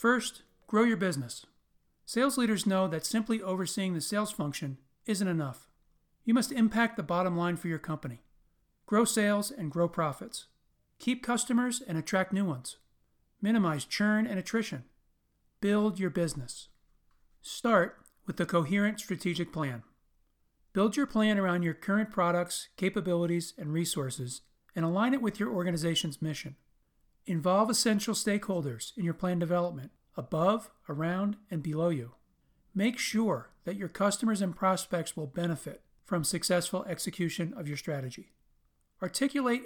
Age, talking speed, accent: 40-59, 140 wpm, American